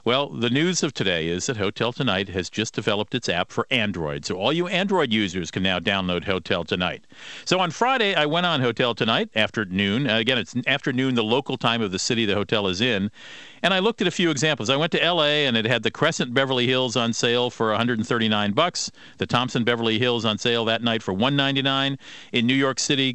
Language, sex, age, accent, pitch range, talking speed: English, male, 50-69, American, 110-145 Hz, 225 wpm